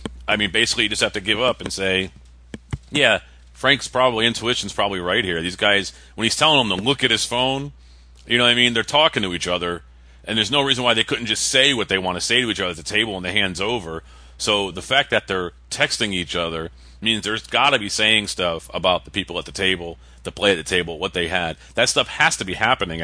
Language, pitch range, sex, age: English, 70-110 Hz, male, 40-59